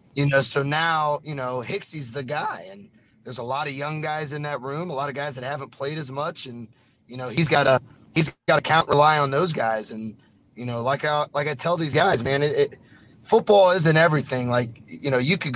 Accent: American